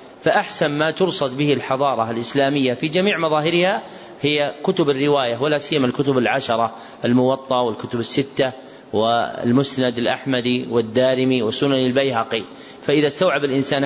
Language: Arabic